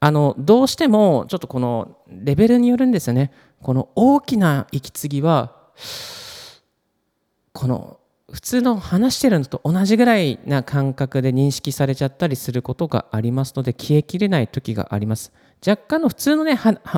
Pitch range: 120-190 Hz